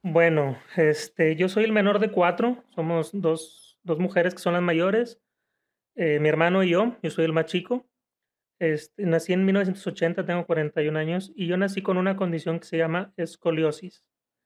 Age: 30-49